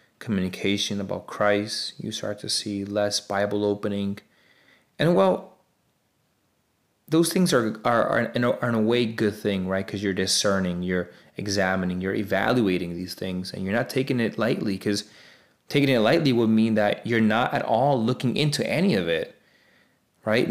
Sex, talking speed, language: male, 175 wpm, English